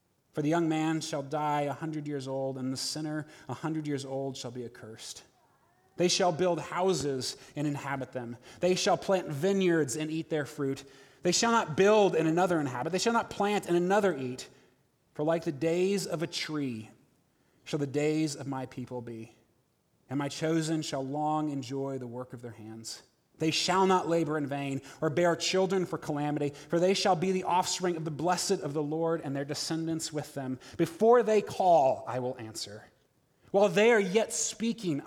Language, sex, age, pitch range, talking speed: English, male, 30-49, 130-170 Hz, 195 wpm